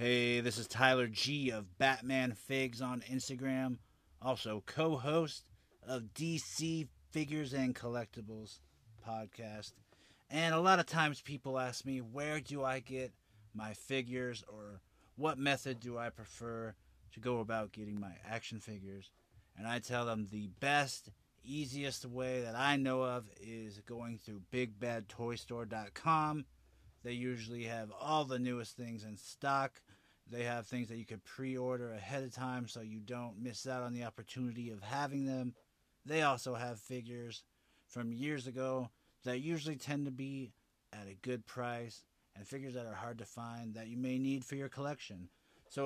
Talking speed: 160 wpm